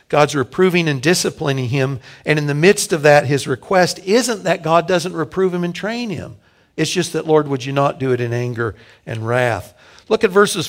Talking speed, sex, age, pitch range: 215 wpm, male, 60-79, 140-185 Hz